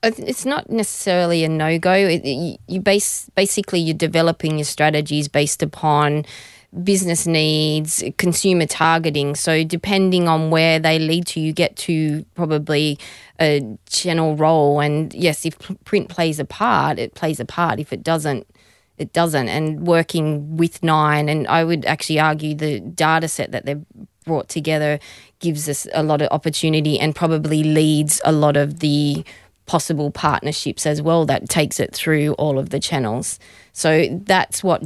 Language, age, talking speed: English, 20-39, 160 wpm